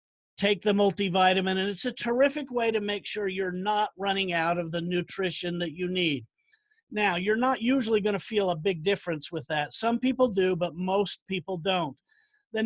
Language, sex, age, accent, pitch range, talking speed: English, male, 50-69, American, 185-235 Hz, 195 wpm